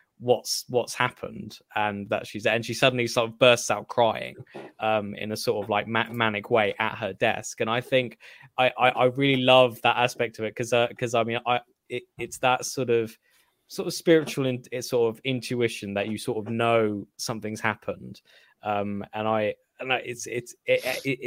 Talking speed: 210 wpm